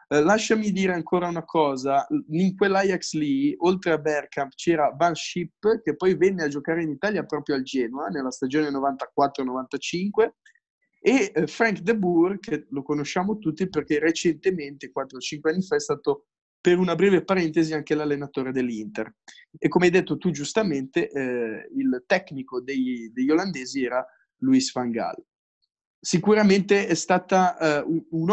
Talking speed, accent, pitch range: 145 wpm, native, 140-180 Hz